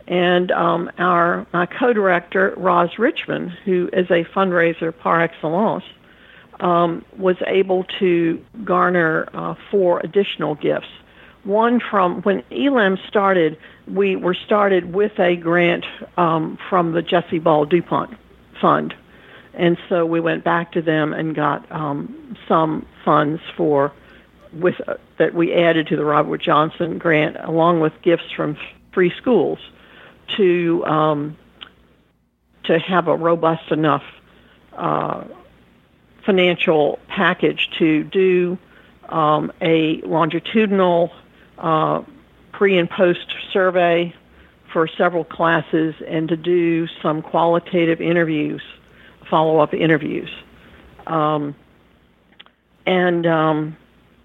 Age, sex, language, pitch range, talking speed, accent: 50-69, female, English, 160-185 Hz, 115 wpm, American